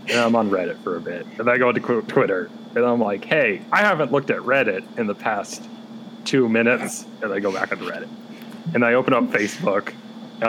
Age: 30-49